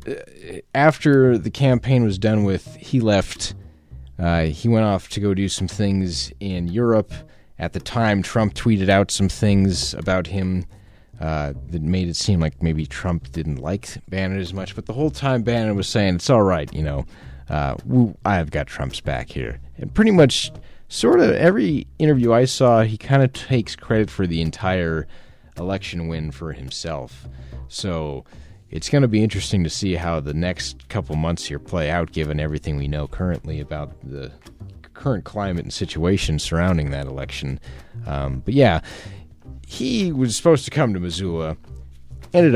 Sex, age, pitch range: male, 30-49, 80-110 Hz